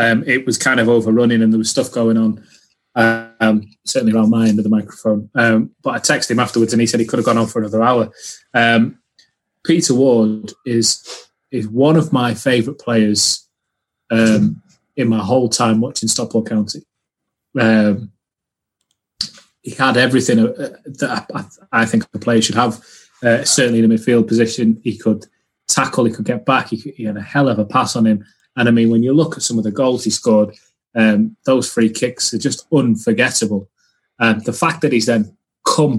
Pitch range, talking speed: 110-130 Hz, 190 wpm